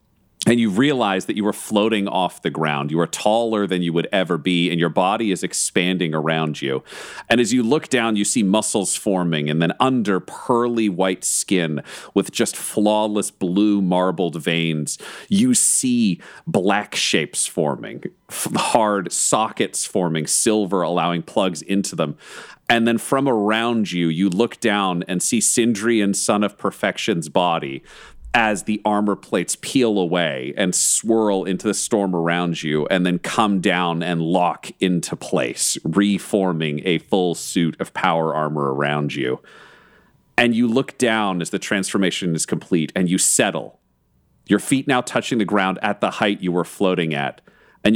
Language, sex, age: English, male, 40-59